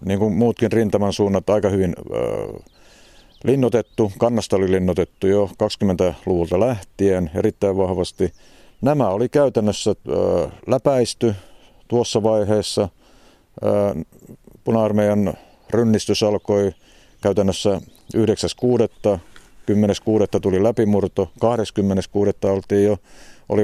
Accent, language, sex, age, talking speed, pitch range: native, Finnish, male, 50-69, 90 wpm, 95-110 Hz